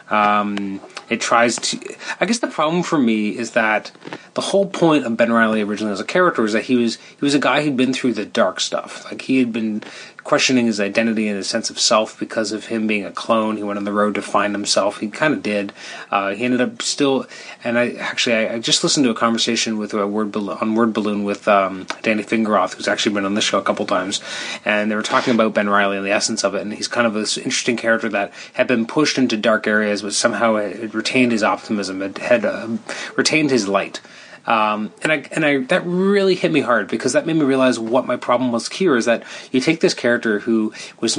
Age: 30-49